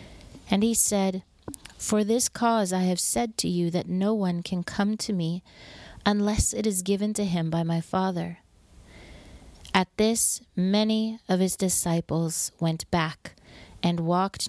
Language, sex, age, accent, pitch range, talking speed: English, female, 30-49, American, 165-200 Hz, 155 wpm